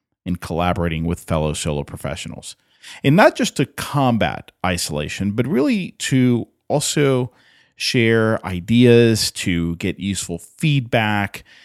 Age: 40-59